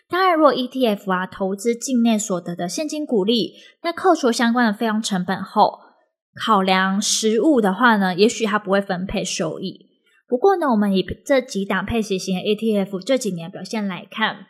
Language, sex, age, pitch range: Chinese, female, 20-39, 195-250 Hz